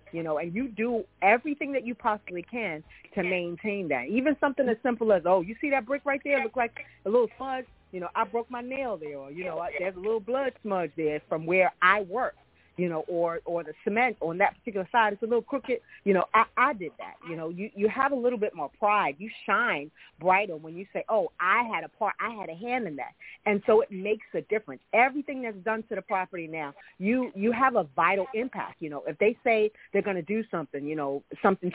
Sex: female